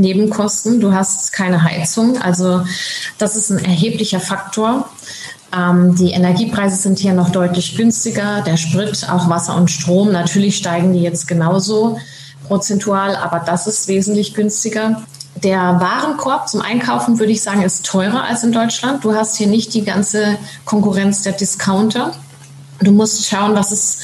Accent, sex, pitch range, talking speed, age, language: German, female, 175-210 Hz, 150 wpm, 30-49, German